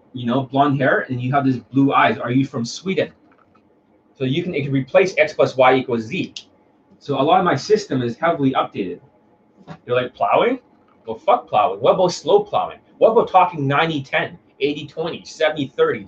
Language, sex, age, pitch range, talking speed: English, male, 30-49, 130-180 Hz, 200 wpm